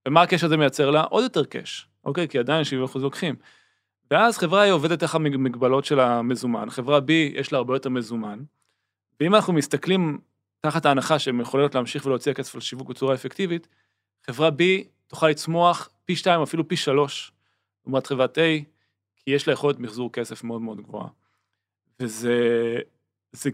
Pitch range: 125-155 Hz